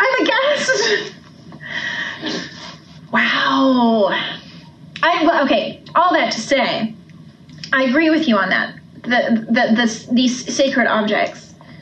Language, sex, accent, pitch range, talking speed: English, female, American, 225-275 Hz, 105 wpm